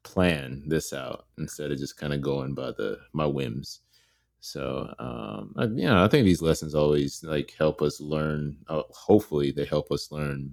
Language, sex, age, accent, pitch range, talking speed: English, male, 30-49, American, 75-85 Hz, 175 wpm